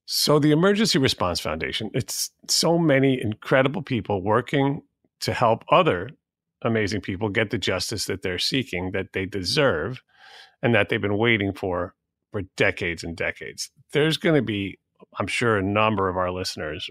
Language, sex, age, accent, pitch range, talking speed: English, male, 40-59, American, 100-125 Hz, 165 wpm